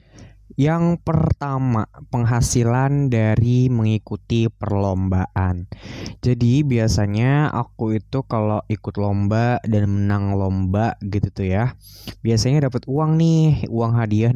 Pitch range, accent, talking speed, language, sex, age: 100-120 Hz, native, 105 wpm, Indonesian, male, 20-39